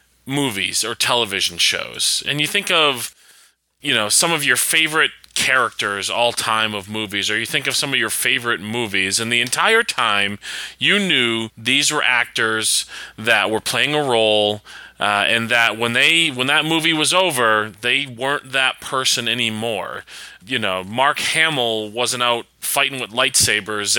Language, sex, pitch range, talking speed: English, male, 115-155 Hz, 165 wpm